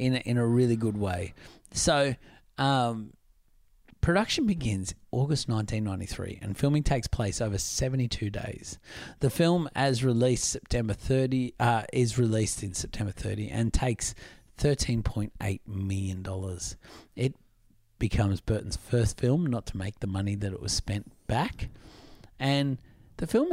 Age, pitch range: 30-49, 100-125 Hz